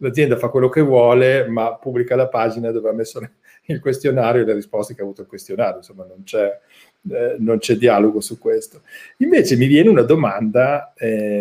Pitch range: 115-150 Hz